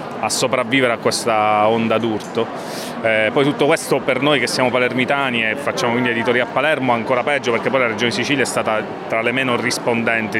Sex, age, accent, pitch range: male, 30-49, native, 105-130 Hz